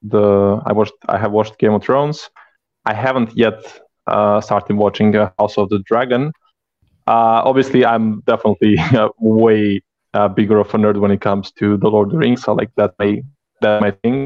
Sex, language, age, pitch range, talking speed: male, English, 20-39, 105-125 Hz, 200 wpm